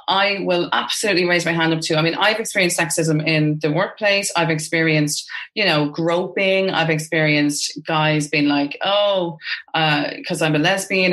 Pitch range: 155-185 Hz